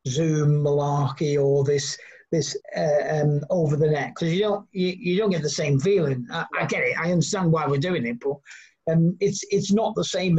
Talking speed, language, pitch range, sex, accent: 215 wpm, English, 145-180 Hz, male, British